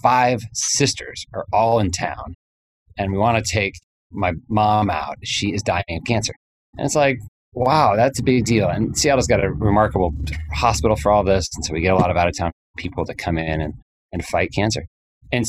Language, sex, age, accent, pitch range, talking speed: English, male, 30-49, American, 90-120 Hz, 210 wpm